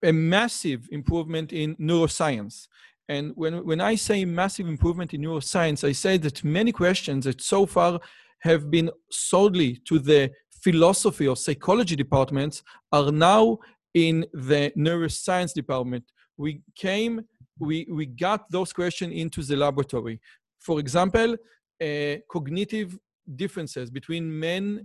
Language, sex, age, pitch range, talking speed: English, male, 40-59, 145-185 Hz, 130 wpm